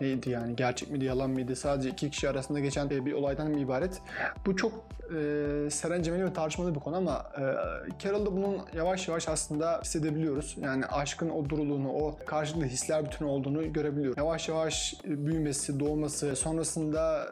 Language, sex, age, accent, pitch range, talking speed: Turkish, male, 30-49, native, 145-165 Hz, 160 wpm